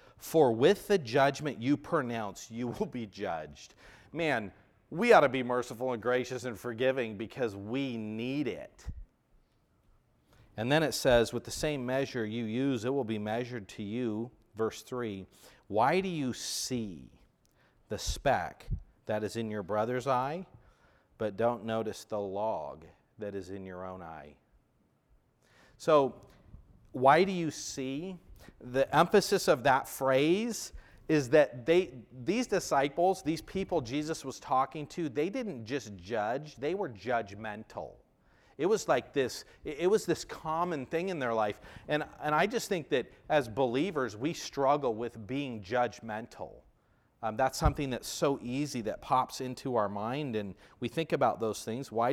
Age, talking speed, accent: 40-59, 155 wpm, American